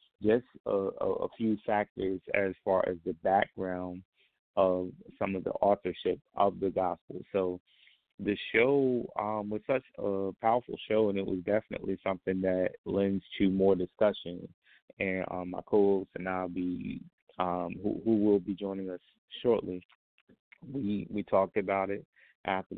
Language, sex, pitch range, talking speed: English, male, 90-100 Hz, 150 wpm